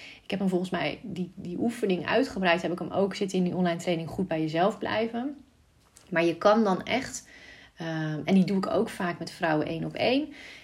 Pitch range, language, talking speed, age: 170-215 Hz, Dutch, 220 wpm, 30-49